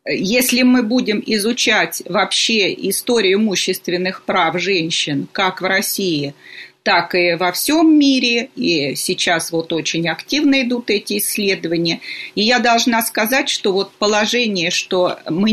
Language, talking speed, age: Russian, 130 wpm, 40-59